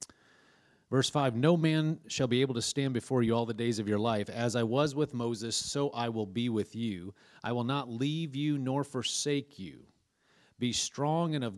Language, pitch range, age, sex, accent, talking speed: English, 110-140 Hz, 40-59, male, American, 205 wpm